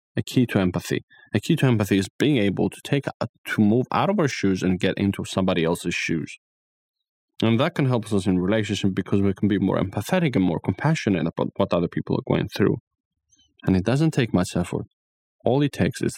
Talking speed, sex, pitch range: 220 wpm, male, 95-125 Hz